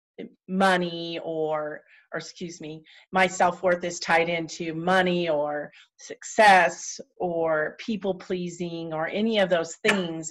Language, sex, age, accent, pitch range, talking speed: English, female, 40-59, American, 165-190 Hz, 120 wpm